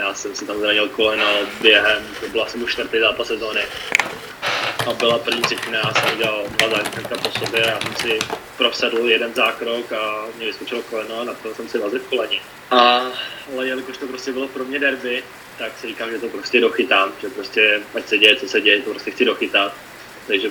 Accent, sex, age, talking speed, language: native, male, 20-39, 200 wpm, Czech